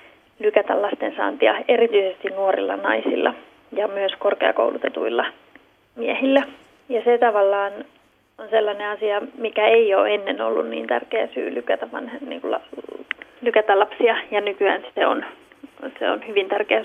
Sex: female